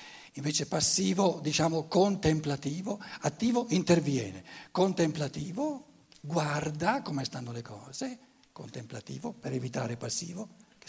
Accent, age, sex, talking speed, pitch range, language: native, 60-79, male, 95 wpm, 145-205 Hz, Italian